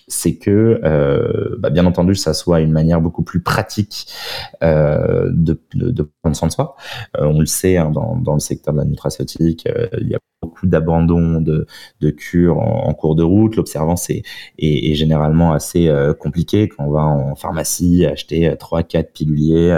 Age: 30-49